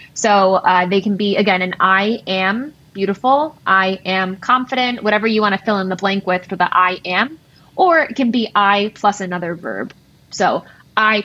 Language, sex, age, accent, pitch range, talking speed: English, female, 20-39, American, 185-225 Hz, 190 wpm